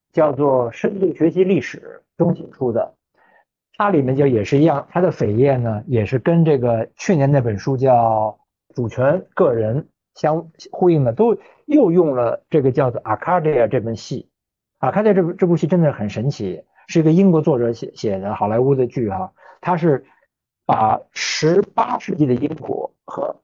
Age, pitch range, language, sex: 50-69, 120-170 Hz, Chinese, male